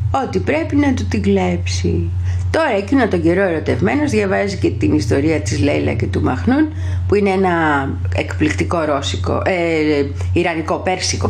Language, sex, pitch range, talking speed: Greek, female, 95-140 Hz, 155 wpm